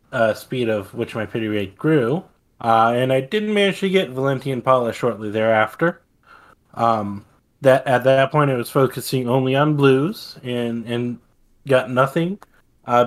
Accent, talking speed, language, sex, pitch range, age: American, 160 wpm, English, male, 115-145 Hz, 20-39